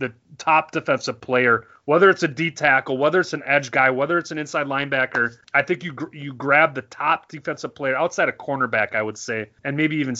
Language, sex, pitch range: English, male, 120-160 Hz